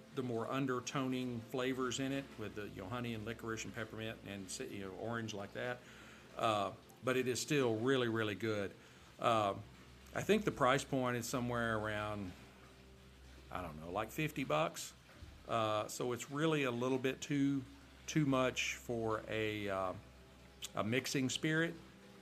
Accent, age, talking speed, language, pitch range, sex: American, 50-69, 160 wpm, English, 100-125 Hz, male